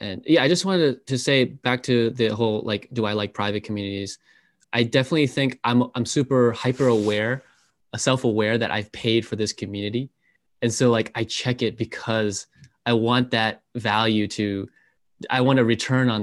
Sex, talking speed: male, 180 wpm